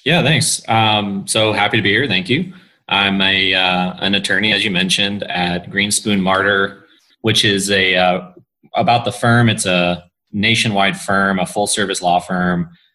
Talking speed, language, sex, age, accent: 165 wpm, English, male, 30-49, American